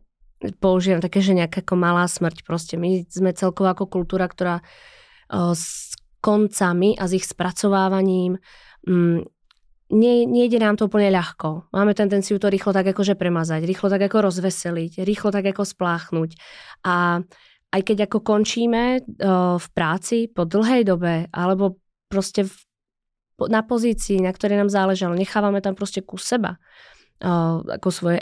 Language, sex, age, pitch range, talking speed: Czech, female, 20-39, 180-210 Hz, 140 wpm